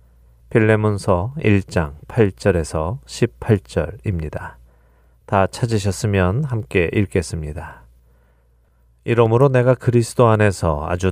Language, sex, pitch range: Korean, male, 90-115 Hz